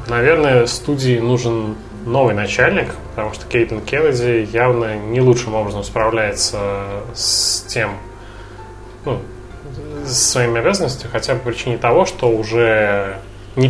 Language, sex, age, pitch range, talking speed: Russian, male, 20-39, 100-120 Hz, 125 wpm